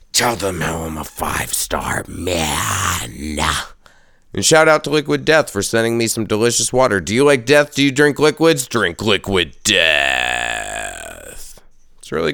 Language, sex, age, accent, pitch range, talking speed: English, male, 30-49, American, 85-125 Hz, 155 wpm